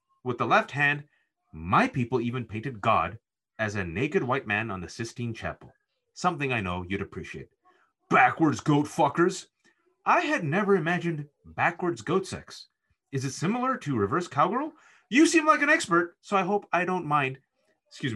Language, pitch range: English, 120-170 Hz